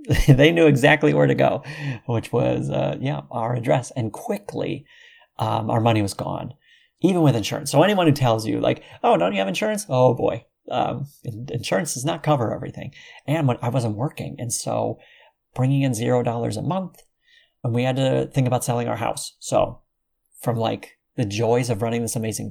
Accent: American